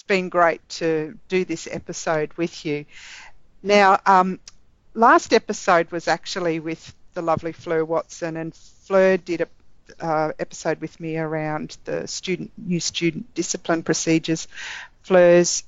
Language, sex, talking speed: English, female, 140 wpm